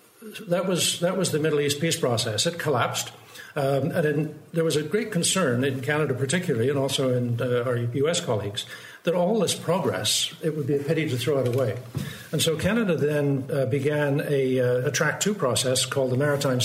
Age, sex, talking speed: 60-79, male, 200 wpm